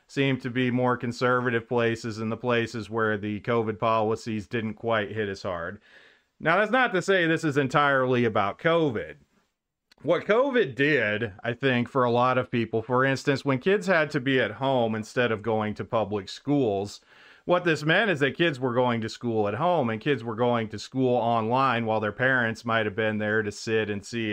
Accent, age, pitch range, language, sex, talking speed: American, 40-59, 110-130 Hz, English, male, 200 wpm